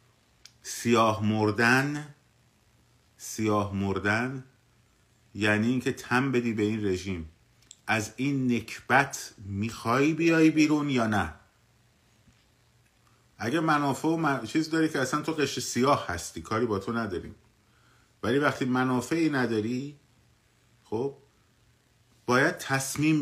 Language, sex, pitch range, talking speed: Persian, male, 110-130 Hz, 105 wpm